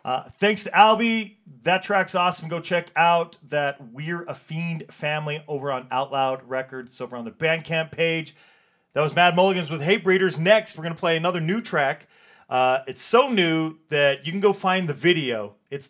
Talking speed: 195 wpm